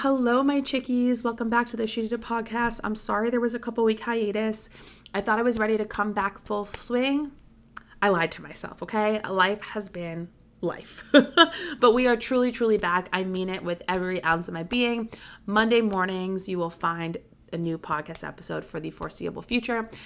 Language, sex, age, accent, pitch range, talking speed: English, female, 20-39, American, 175-220 Hz, 195 wpm